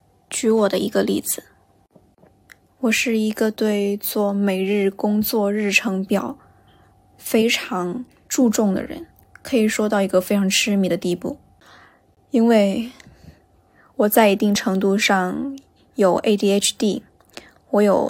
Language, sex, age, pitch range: Chinese, female, 10-29, 195-220 Hz